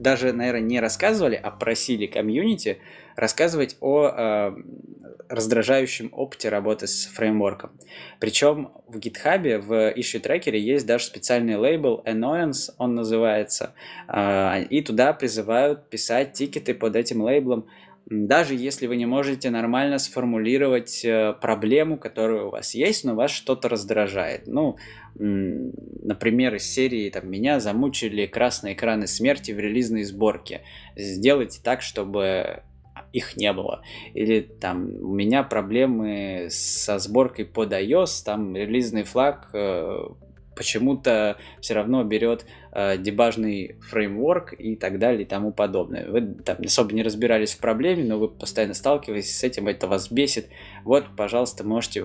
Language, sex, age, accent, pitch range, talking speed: Russian, male, 20-39, native, 100-120 Hz, 135 wpm